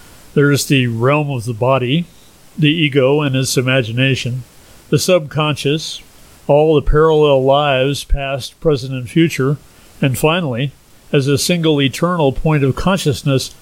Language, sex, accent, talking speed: English, male, American, 135 wpm